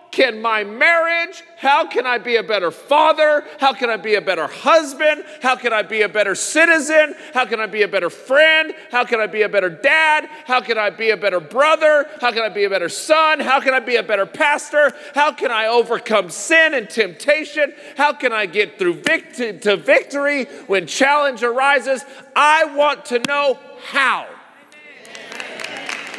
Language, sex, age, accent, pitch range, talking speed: English, male, 40-59, American, 225-305 Hz, 185 wpm